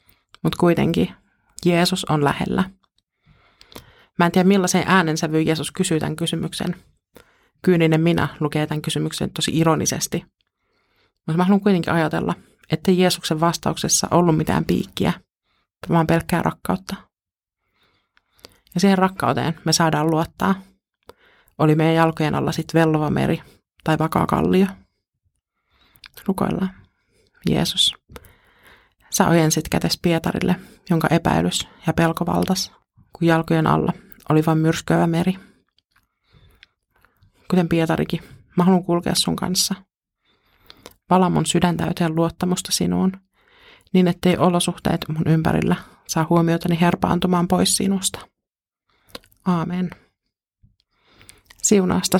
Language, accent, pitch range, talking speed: Finnish, native, 160-185 Hz, 105 wpm